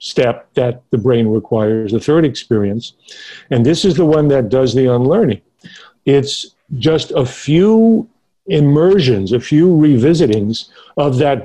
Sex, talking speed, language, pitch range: male, 140 wpm, English, 115-145 Hz